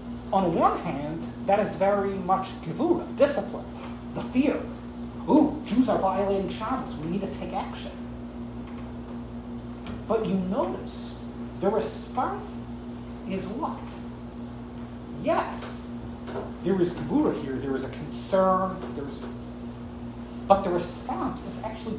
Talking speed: 115 wpm